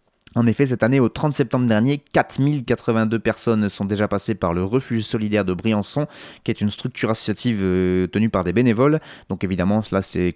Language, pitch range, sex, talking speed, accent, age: French, 100-125 Hz, male, 185 wpm, French, 20-39